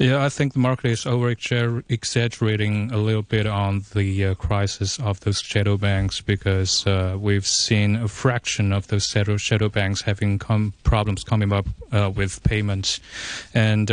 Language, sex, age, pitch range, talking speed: English, male, 30-49, 100-115 Hz, 170 wpm